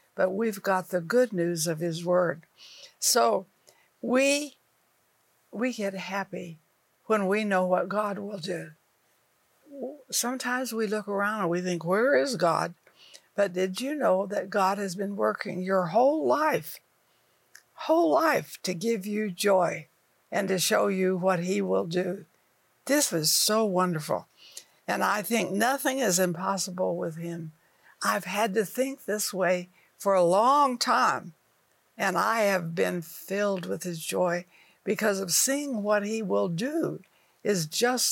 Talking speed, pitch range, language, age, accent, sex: 150 wpm, 180-220 Hz, English, 60-79, American, female